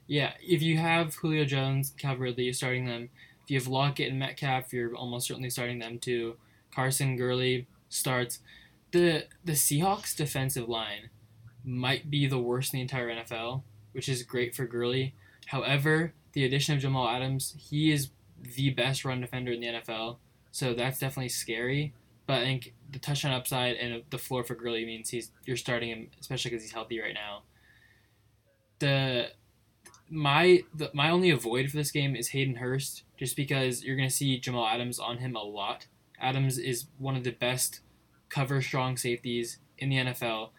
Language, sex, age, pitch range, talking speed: English, male, 10-29, 120-135 Hz, 175 wpm